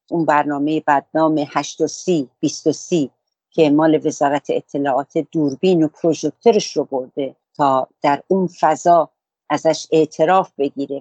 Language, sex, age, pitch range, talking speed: English, female, 50-69, 145-180 Hz, 115 wpm